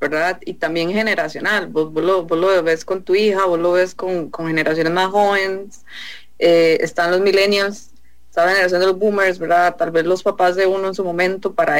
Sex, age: female, 30-49